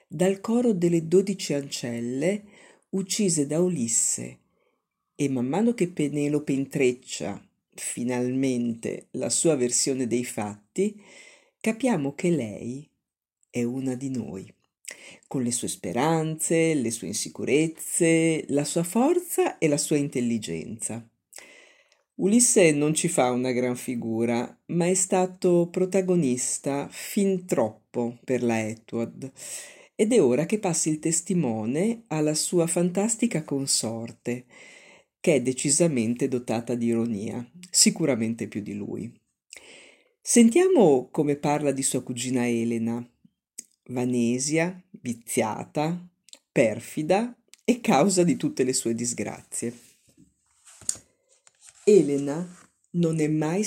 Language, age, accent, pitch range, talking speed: Italian, 50-69, native, 125-185 Hz, 110 wpm